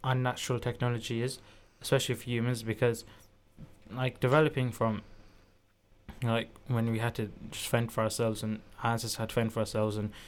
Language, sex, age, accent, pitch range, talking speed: English, male, 10-29, British, 110-125 Hz, 160 wpm